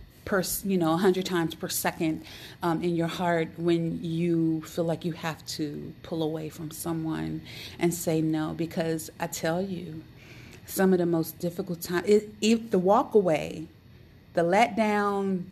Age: 30-49